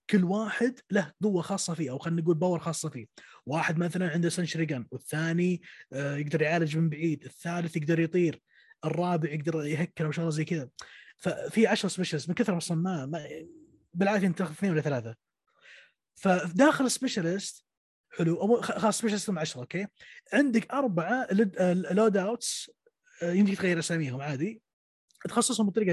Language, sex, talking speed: Arabic, male, 145 wpm